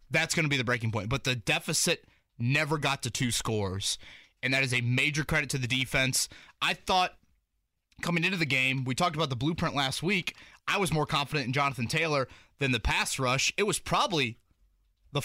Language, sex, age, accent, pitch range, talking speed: English, male, 20-39, American, 120-155 Hz, 205 wpm